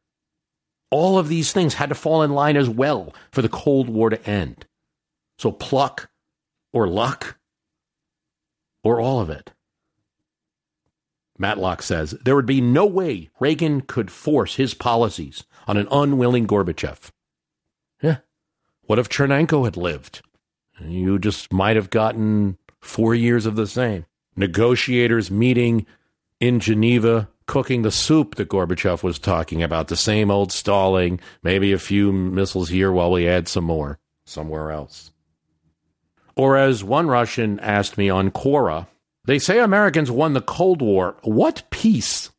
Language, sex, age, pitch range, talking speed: English, male, 50-69, 95-140 Hz, 145 wpm